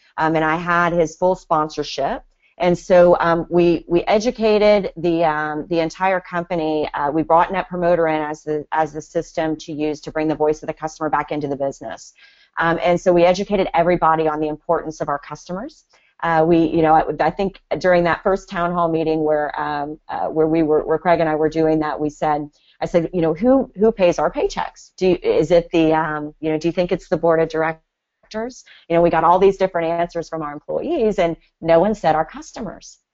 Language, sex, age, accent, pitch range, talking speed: English, female, 40-59, American, 155-185 Hz, 225 wpm